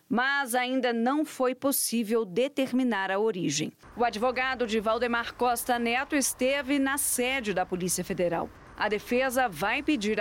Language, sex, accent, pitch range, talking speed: Portuguese, female, Brazilian, 210-260 Hz, 140 wpm